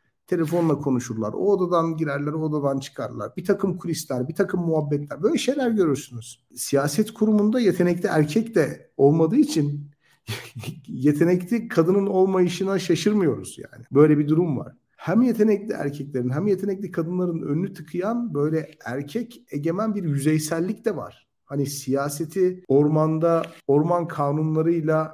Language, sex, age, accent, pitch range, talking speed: Turkish, male, 50-69, native, 140-185 Hz, 125 wpm